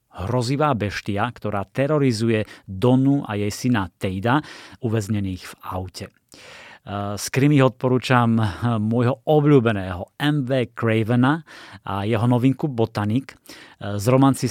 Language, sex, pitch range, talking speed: Slovak, male, 105-135 Hz, 105 wpm